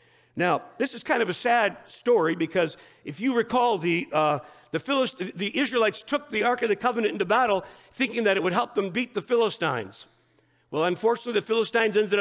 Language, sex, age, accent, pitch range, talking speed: English, male, 50-69, American, 185-245 Hz, 195 wpm